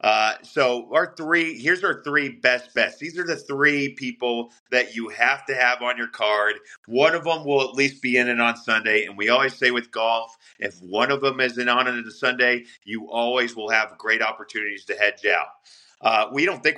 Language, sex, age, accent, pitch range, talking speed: English, male, 40-59, American, 120-140 Hz, 220 wpm